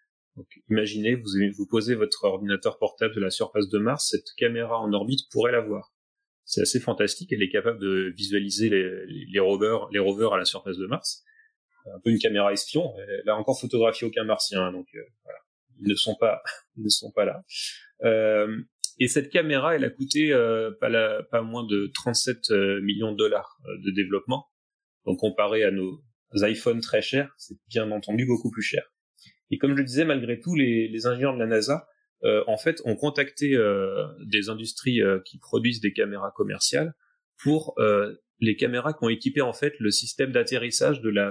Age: 30-49